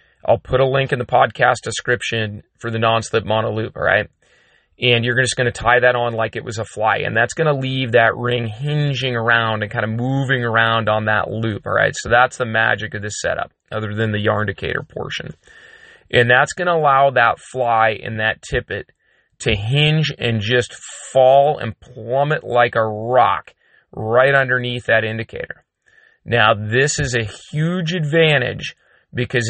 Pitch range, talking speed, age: 110-130 Hz, 185 wpm, 30-49